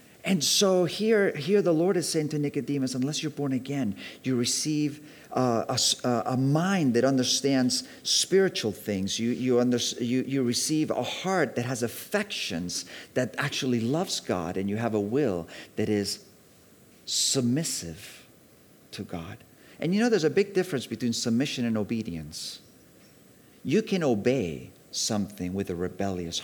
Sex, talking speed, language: male, 150 wpm, English